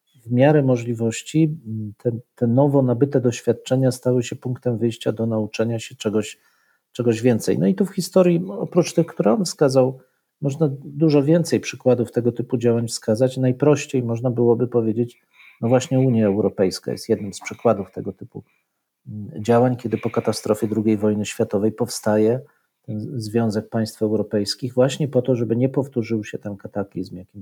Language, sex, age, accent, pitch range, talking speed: Polish, male, 40-59, native, 110-145 Hz, 155 wpm